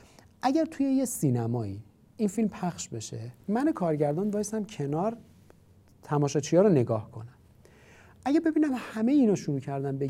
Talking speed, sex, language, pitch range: 135 wpm, male, Persian, 125-210 Hz